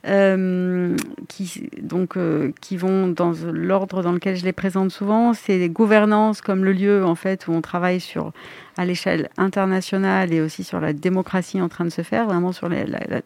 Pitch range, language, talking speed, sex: 175-200 Hz, French, 200 wpm, female